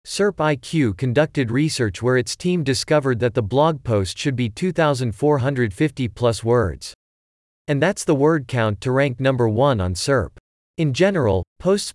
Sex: male